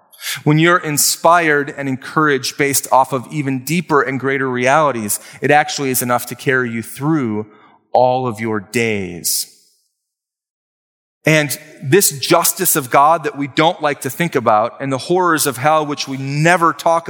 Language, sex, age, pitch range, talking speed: English, male, 30-49, 140-175 Hz, 160 wpm